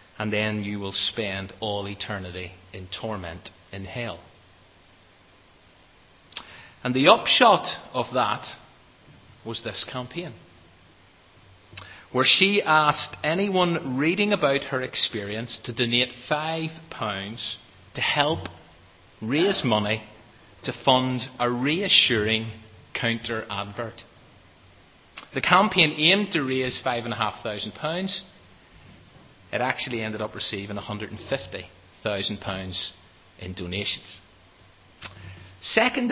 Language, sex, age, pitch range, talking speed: English, male, 30-49, 95-130 Hz, 90 wpm